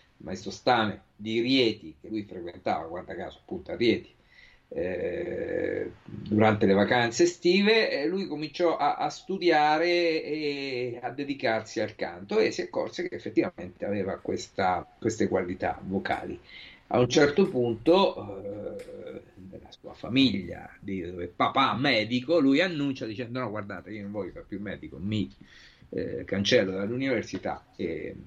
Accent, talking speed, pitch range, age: native, 140 wpm, 100-150 Hz, 50-69